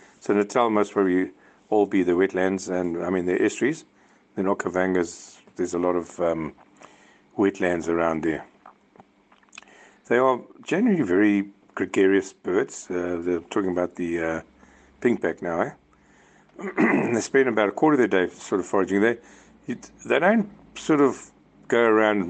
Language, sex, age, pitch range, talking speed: English, male, 50-69, 90-100 Hz, 150 wpm